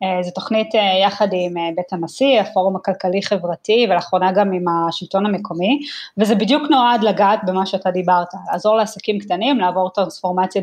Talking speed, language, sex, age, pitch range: 160 wpm, Hebrew, female, 20-39, 185-225 Hz